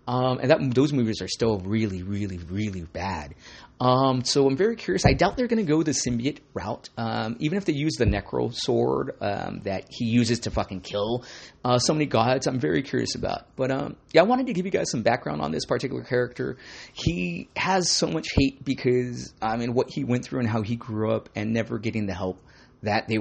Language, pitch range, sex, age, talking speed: English, 105-130 Hz, male, 30-49, 225 wpm